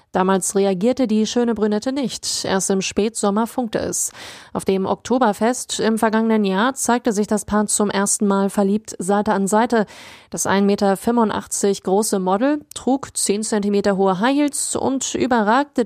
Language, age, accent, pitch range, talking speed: German, 20-39, German, 195-230 Hz, 155 wpm